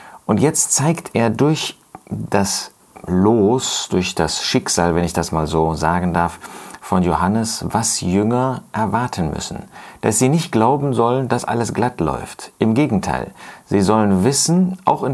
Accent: German